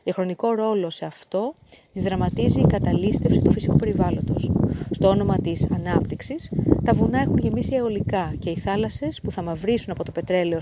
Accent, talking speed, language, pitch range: native, 165 wpm, Greek, 180-225 Hz